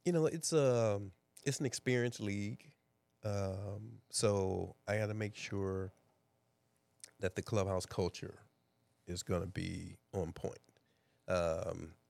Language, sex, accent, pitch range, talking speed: English, male, American, 95-115 Hz, 130 wpm